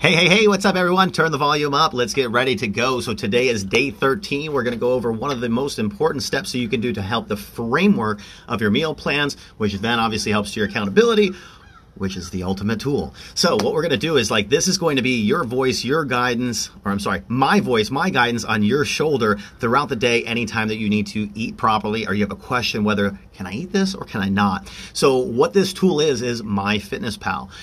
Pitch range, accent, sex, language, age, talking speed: 105-140 Hz, American, male, English, 40-59, 245 wpm